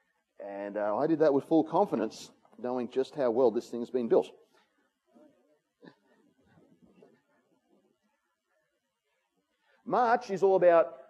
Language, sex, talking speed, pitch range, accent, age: English, male, 110 wpm, 160-225 Hz, Australian, 40-59